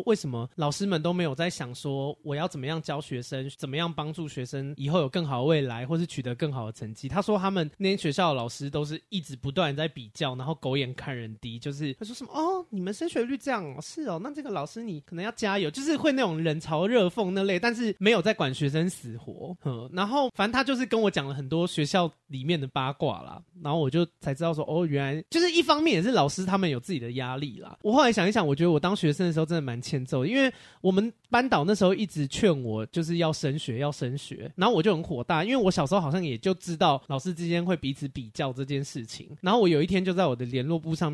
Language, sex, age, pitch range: Chinese, male, 20-39, 140-190 Hz